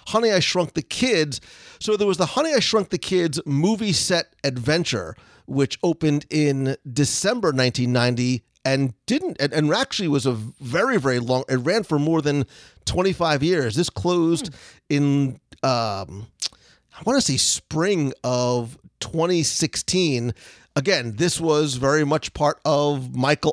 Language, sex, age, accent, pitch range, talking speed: English, male, 40-59, American, 130-165 Hz, 145 wpm